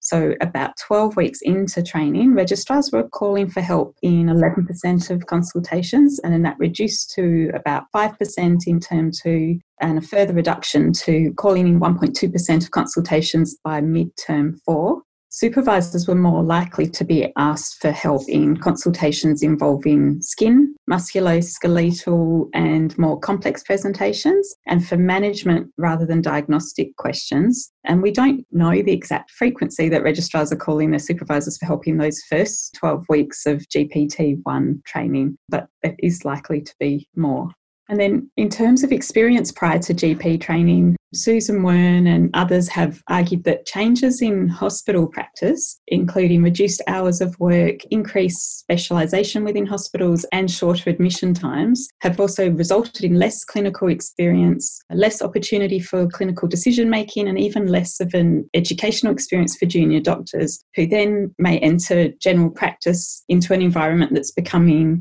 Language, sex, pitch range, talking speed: English, female, 160-200 Hz, 150 wpm